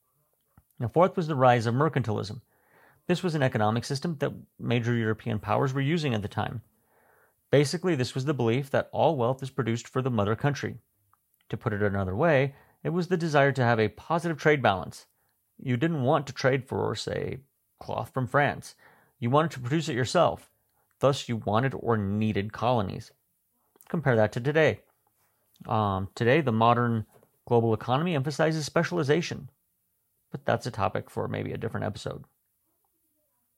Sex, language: male, English